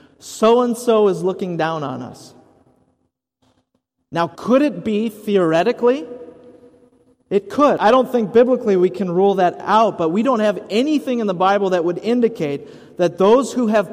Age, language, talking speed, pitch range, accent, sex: 40-59, English, 170 wpm, 145-210 Hz, American, male